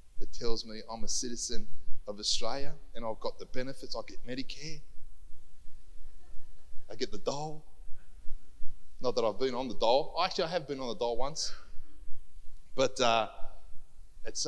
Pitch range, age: 85-115 Hz, 30-49